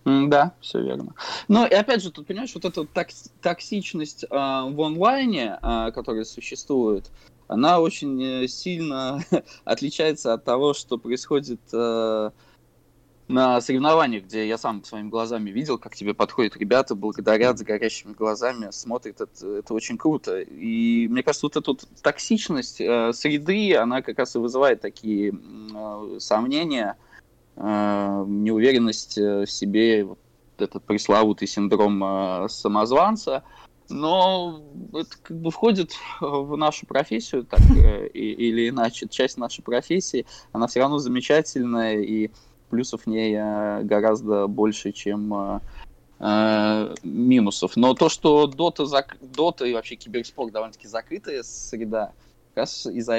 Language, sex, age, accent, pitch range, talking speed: Russian, male, 20-39, native, 110-155 Hz, 125 wpm